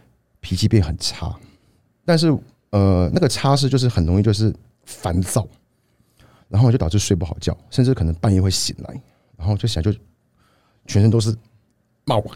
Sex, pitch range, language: male, 85-115 Hz, Chinese